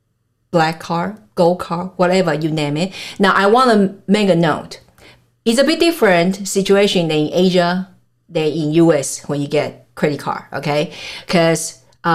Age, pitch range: 50-69, 150-190 Hz